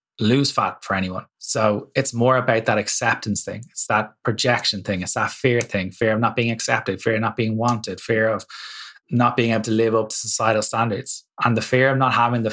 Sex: male